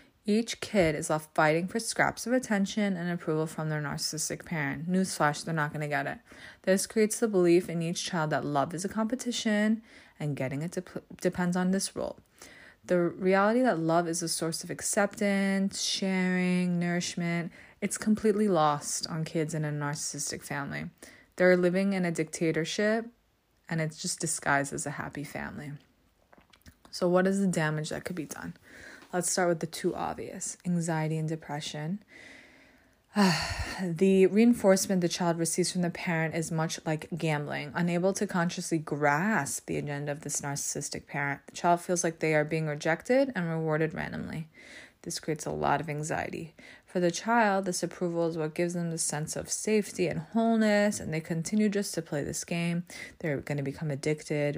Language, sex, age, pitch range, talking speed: English, female, 20-39, 155-190 Hz, 175 wpm